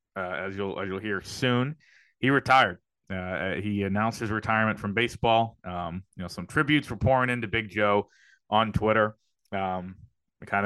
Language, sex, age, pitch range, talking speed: English, male, 30-49, 100-120 Hz, 170 wpm